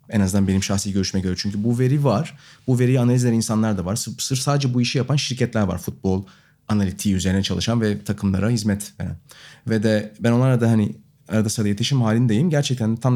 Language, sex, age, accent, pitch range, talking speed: Turkish, male, 30-49, native, 105-135 Hz, 200 wpm